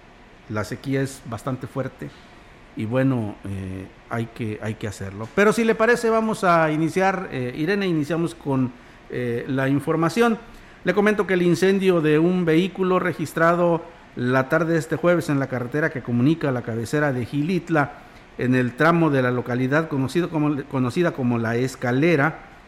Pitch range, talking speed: 130-170 Hz, 155 wpm